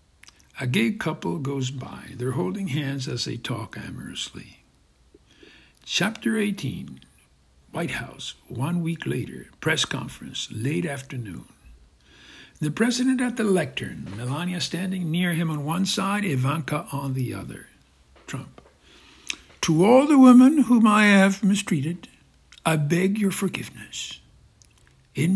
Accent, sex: American, male